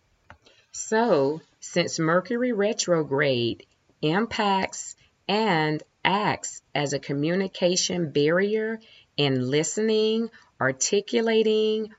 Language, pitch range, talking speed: English, 135-190 Hz, 70 wpm